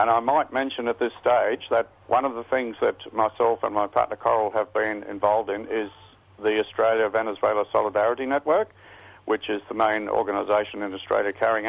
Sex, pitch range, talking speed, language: male, 105-120 Hz, 180 wpm, English